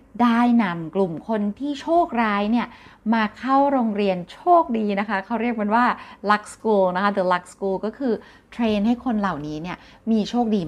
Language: Thai